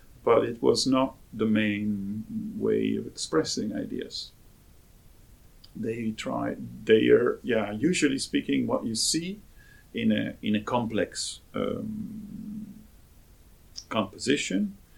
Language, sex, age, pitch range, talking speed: Danish, male, 50-69, 100-145 Hz, 110 wpm